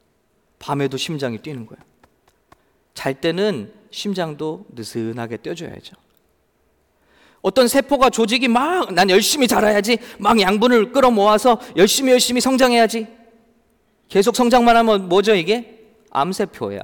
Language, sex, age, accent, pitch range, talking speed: English, male, 40-59, Korean, 180-245 Hz, 95 wpm